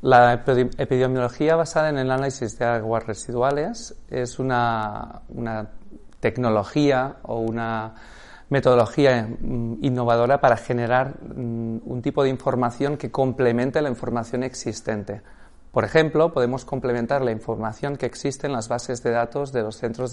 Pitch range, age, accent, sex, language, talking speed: 115-135 Hz, 40-59, Spanish, male, Spanish, 130 wpm